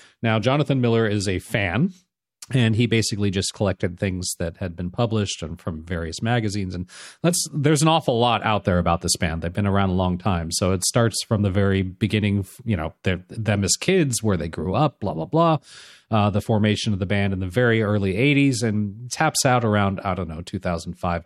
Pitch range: 95-120 Hz